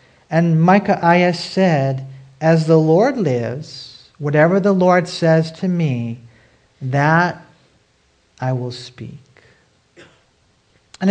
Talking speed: 105 wpm